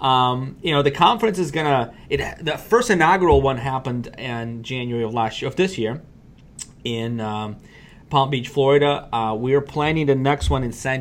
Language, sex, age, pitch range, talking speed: English, male, 30-49, 115-140 Hz, 190 wpm